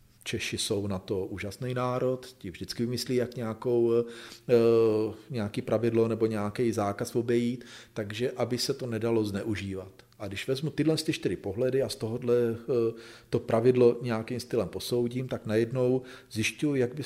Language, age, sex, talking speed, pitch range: Slovak, 40-59, male, 160 wpm, 110-130 Hz